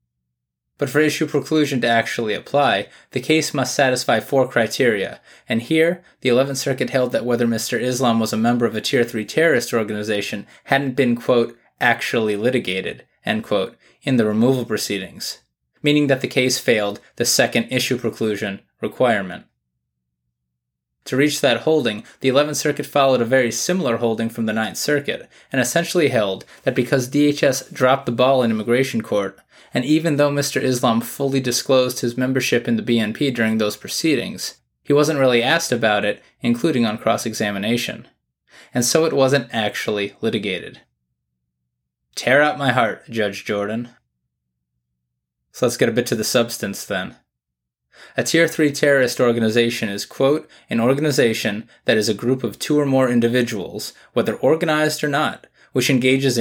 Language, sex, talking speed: English, male, 160 wpm